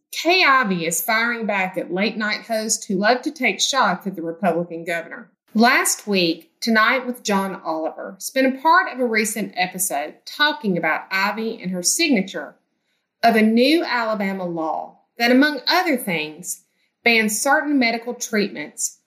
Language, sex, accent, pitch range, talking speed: English, female, American, 185-250 Hz, 155 wpm